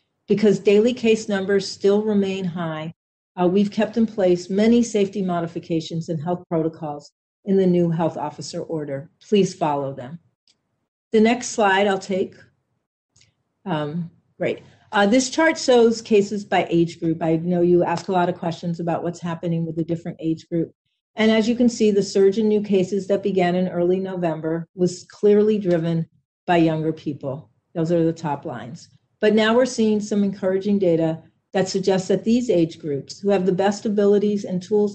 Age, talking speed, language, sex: 40-59, 180 wpm, English, female